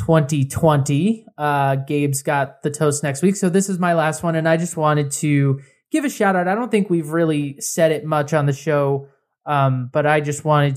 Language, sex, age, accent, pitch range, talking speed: English, male, 20-39, American, 140-160 Hz, 215 wpm